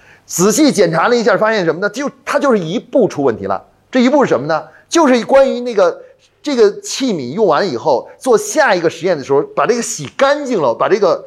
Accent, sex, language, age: native, male, Chinese, 30-49